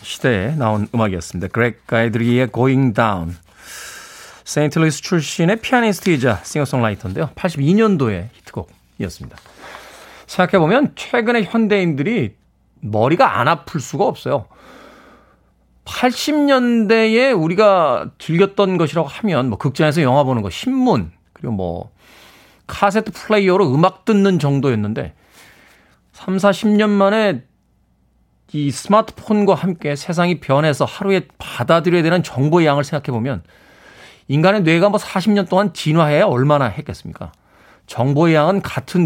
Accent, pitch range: native, 120-190 Hz